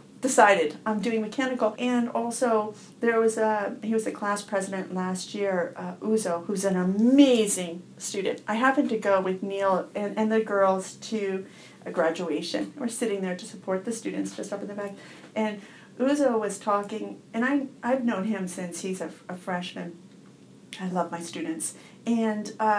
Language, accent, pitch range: English, American, 185-225 Hz